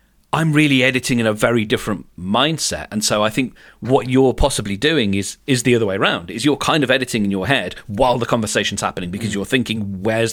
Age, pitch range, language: 40-59, 100-125 Hz, English